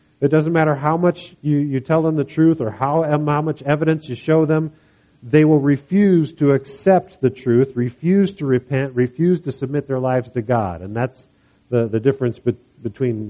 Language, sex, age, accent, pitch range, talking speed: English, male, 50-69, American, 120-155 Hz, 190 wpm